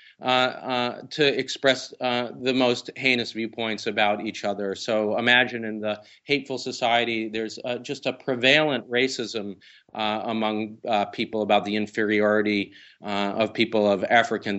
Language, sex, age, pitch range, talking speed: English, male, 40-59, 105-130 Hz, 150 wpm